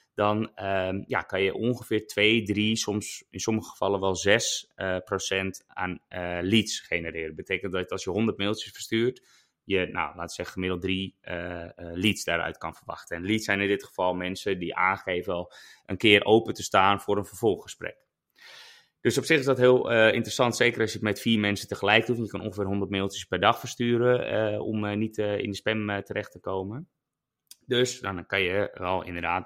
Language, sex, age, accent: Dutch, male, 20-39, Dutch